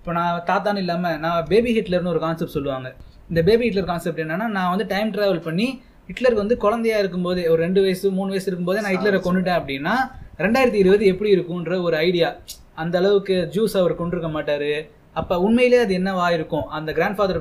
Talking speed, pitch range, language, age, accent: 185 wpm, 160-195 Hz, Tamil, 20-39, native